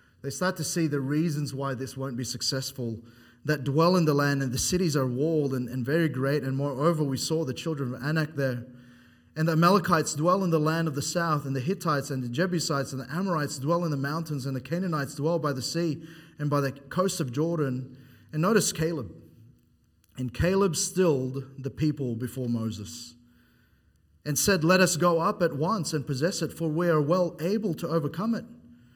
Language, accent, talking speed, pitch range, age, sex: English, Australian, 205 wpm, 125-160 Hz, 30-49, male